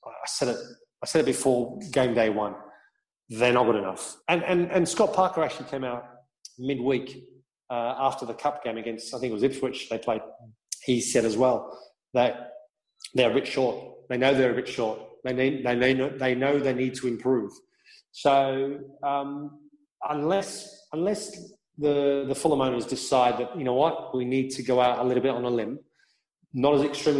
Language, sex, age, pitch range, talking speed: English, male, 30-49, 125-155 Hz, 185 wpm